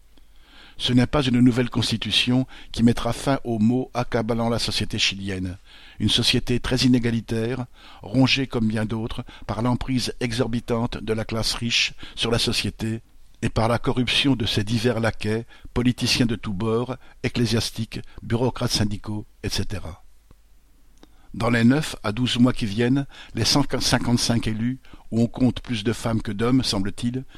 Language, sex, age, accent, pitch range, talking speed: French, male, 60-79, French, 110-125 Hz, 150 wpm